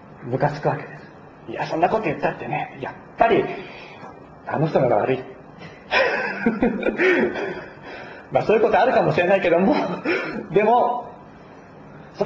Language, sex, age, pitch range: Japanese, male, 40-59, 145-190 Hz